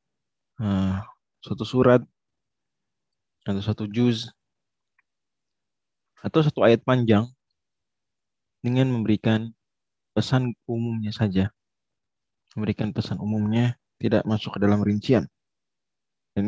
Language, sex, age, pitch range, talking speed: Indonesian, male, 20-39, 105-130 Hz, 90 wpm